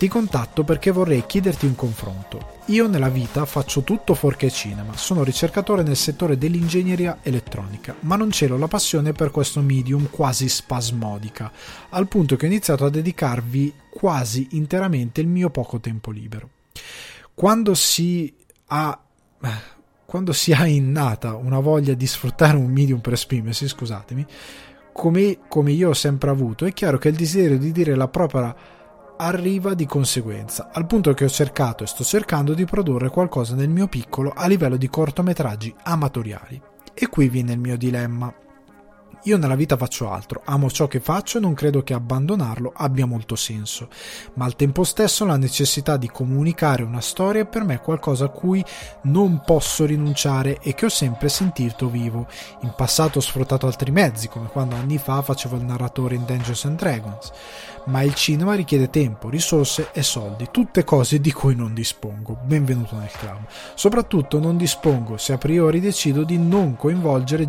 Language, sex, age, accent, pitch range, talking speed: Italian, male, 20-39, native, 125-165 Hz, 165 wpm